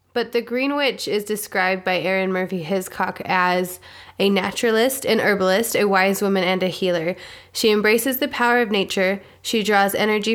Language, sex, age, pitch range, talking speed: English, female, 20-39, 185-230 Hz, 175 wpm